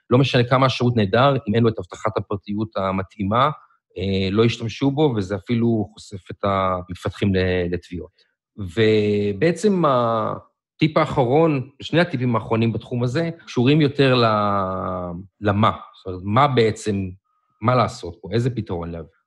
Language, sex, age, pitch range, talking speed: Hebrew, male, 40-59, 105-155 Hz, 130 wpm